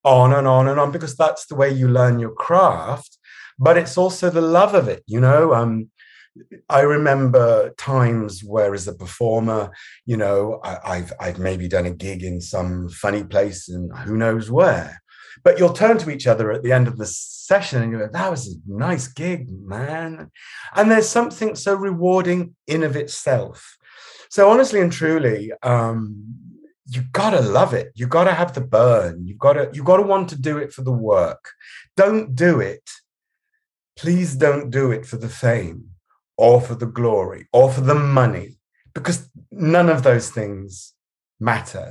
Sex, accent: male, British